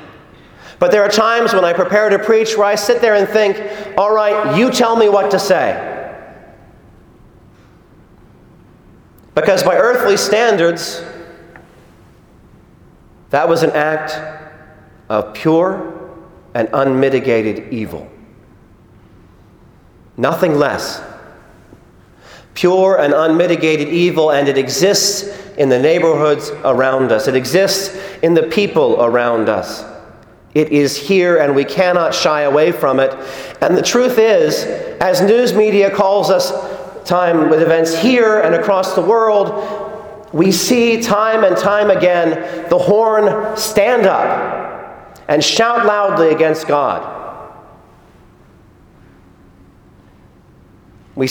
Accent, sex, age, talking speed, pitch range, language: American, male, 40-59, 115 wpm, 140-205 Hz, English